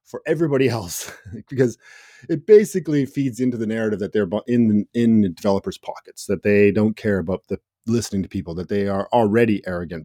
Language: English